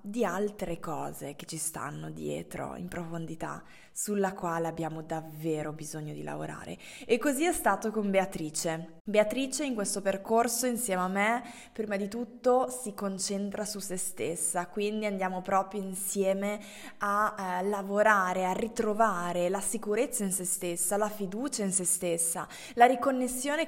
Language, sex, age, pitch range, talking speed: Italian, female, 20-39, 180-220 Hz, 145 wpm